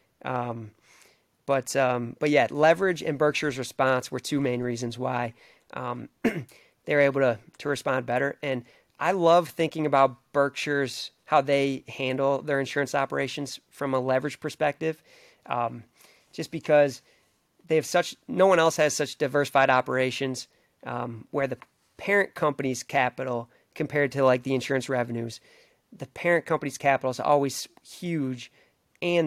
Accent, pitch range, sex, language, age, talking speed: American, 130-155 Hz, male, English, 30-49, 145 wpm